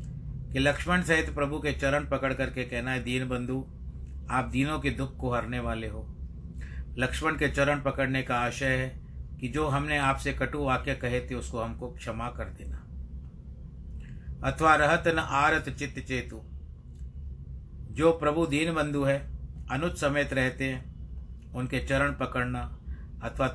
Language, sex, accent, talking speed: Hindi, male, native, 150 wpm